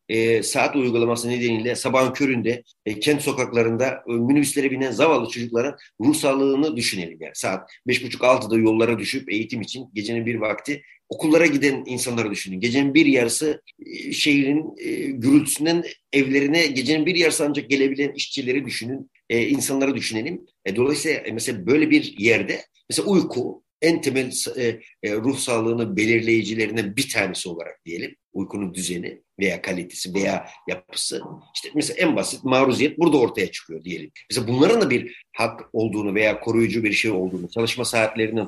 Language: Turkish